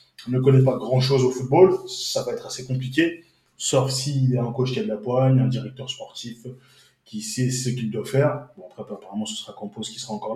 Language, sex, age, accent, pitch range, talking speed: French, male, 20-39, French, 125-140 Hz, 230 wpm